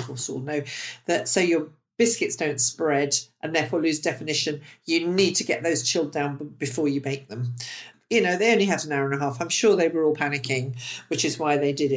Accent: British